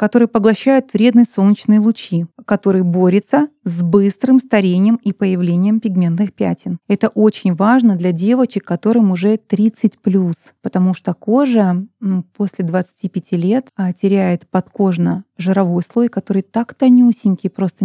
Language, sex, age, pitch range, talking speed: Russian, female, 30-49, 185-215 Hz, 125 wpm